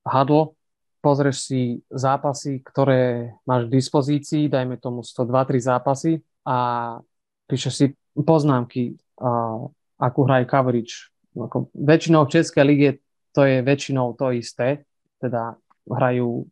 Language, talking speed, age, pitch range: Slovak, 115 wpm, 30-49, 120-140 Hz